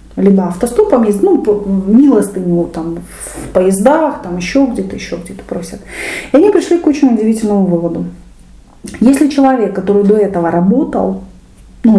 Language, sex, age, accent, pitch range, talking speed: Russian, female, 30-49, native, 175-265 Hz, 145 wpm